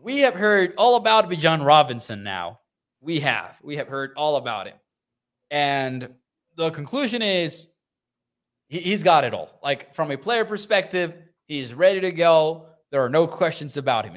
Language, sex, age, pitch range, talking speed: English, male, 20-39, 135-180 Hz, 165 wpm